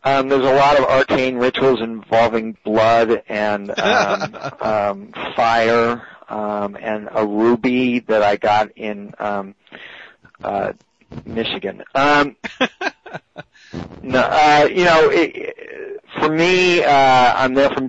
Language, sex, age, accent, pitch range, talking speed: English, male, 40-59, American, 100-115 Hz, 125 wpm